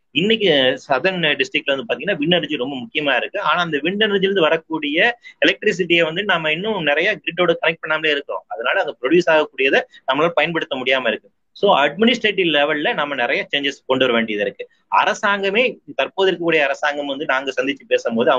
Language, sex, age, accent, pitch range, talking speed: Tamil, male, 30-49, native, 135-225 Hz, 145 wpm